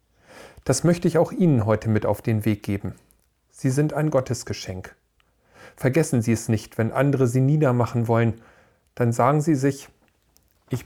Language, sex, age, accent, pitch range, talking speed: German, male, 40-59, German, 105-140 Hz, 160 wpm